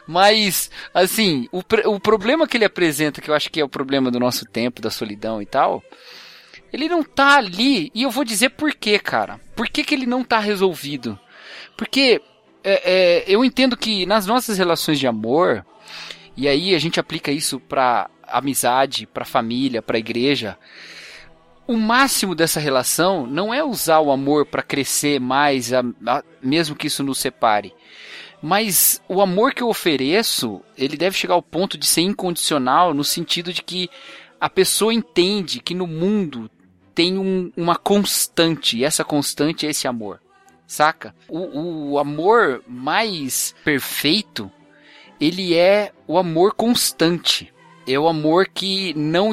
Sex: male